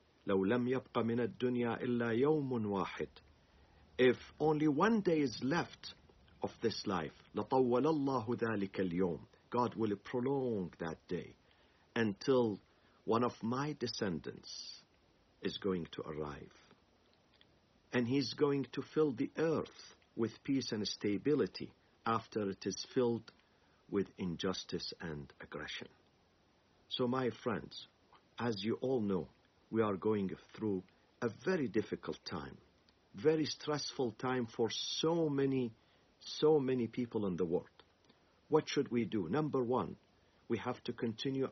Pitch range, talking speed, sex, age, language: 100-130 Hz, 130 wpm, male, 50-69, English